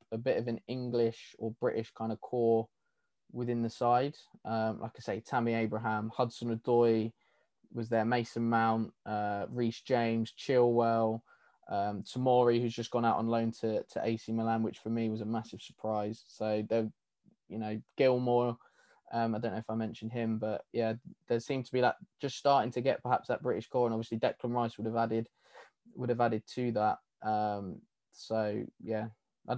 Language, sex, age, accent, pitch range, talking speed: English, male, 20-39, British, 110-125 Hz, 180 wpm